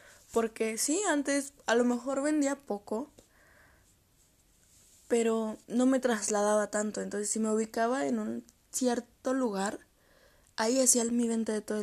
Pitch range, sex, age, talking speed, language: 195-245 Hz, female, 20-39, 135 wpm, Spanish